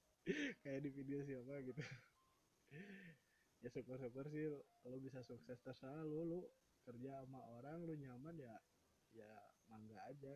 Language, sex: Indonesian, male